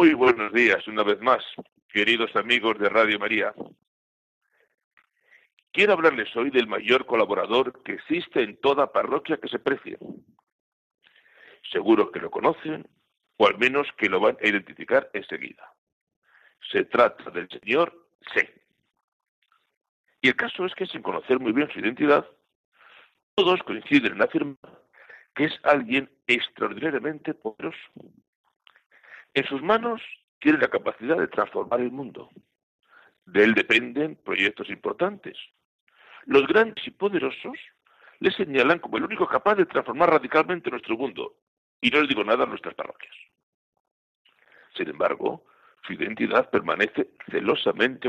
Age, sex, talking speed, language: 60-79, male, 135 wpm, Spanish